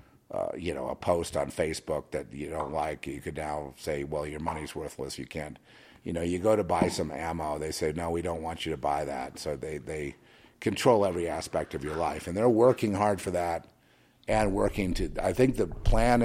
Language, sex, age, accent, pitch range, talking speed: English, male, 50-69, American, 75-100 Hz, 225 wpm